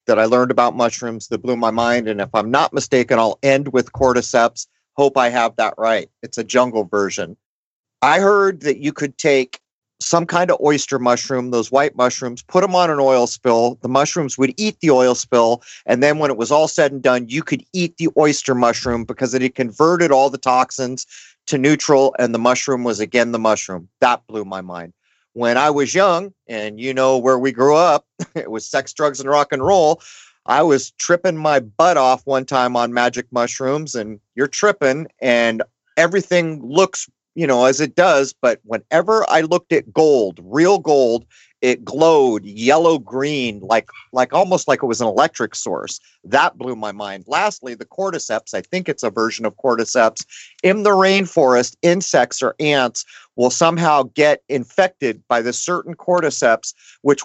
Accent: American